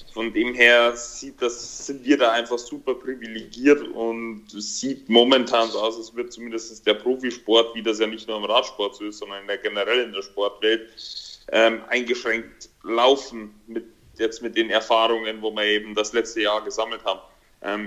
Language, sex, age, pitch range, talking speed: German, male, 30-49, 105-120 Hz, 175 wpm